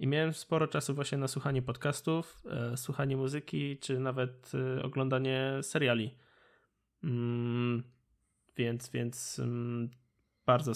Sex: male